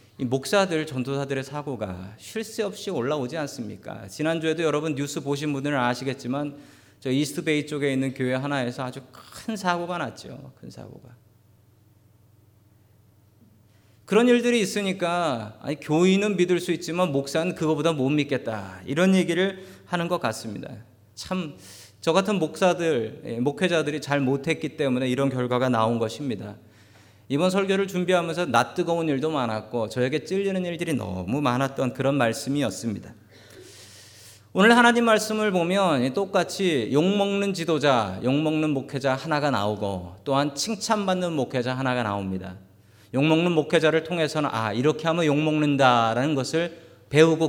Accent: native